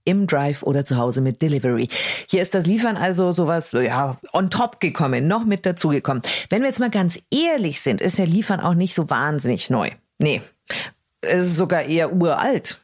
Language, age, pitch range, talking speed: German, 40-59, 155-230 Hz, 190 wpm